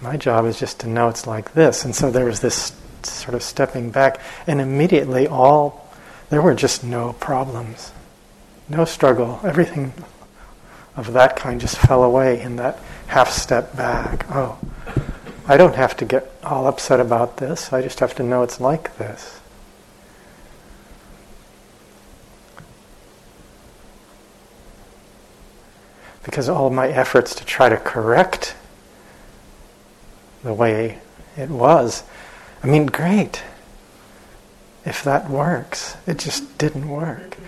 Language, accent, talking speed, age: English, American, 130 wpm, 40-59